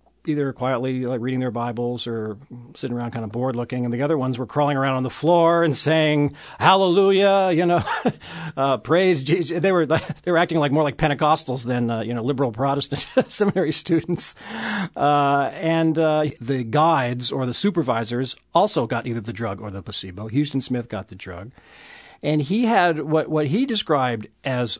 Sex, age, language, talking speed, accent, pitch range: male, 40-59, English, 185 wpm, American, 120-160 Hz